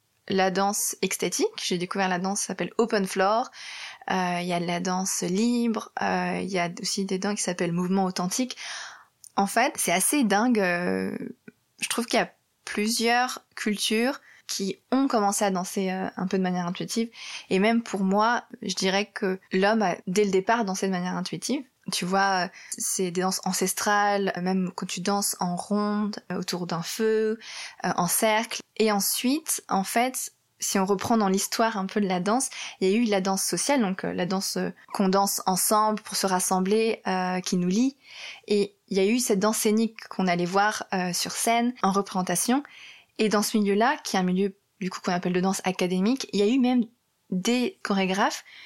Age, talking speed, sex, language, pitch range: 20-39, 195 wpm, female, French, 185-220 Hz